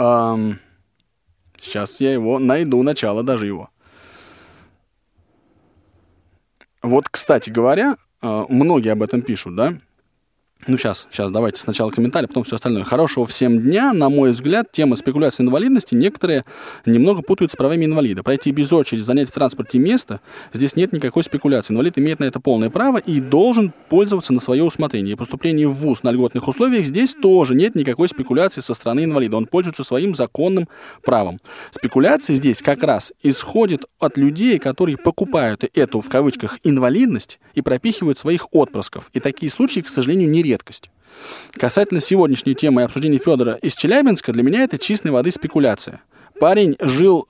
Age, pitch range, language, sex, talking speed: 20-39, 125-180 Hz, Russian, male, 155 wpm